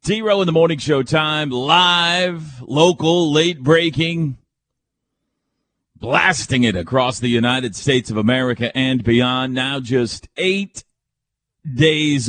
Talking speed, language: 110 wpm, English